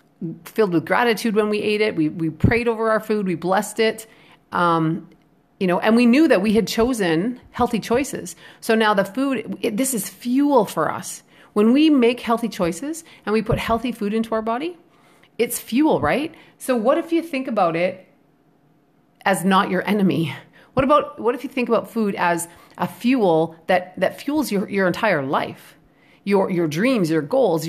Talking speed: 190 wpm